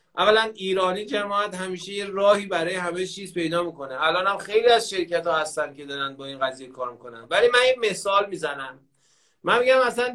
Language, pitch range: Persian, 170-230 Hz